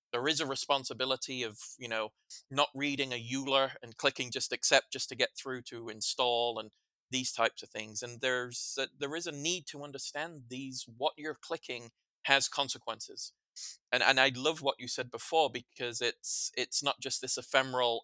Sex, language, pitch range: male, English, 120-140 Hz